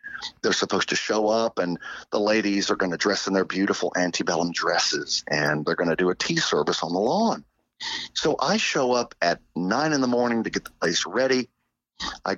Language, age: English, 50-69